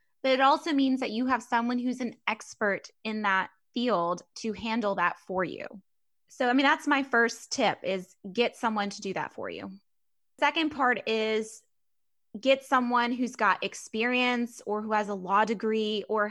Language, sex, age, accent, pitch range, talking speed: English, female, 20-39, American, 200-245 Hz, 180 wpm